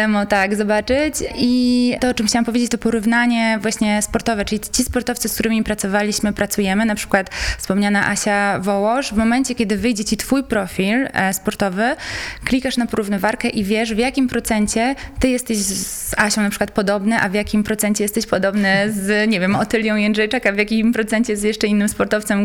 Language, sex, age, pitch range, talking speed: Polish, female, 20-39, 185-225 Hz, 175 wpm